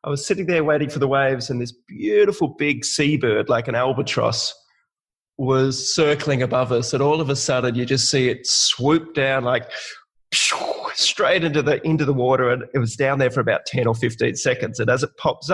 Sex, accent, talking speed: male, Australian, 210 wpm